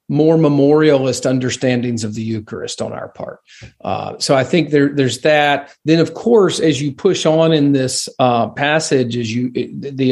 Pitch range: 130-155 Hz